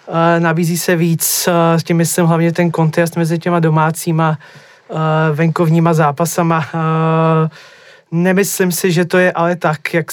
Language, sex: Czech, male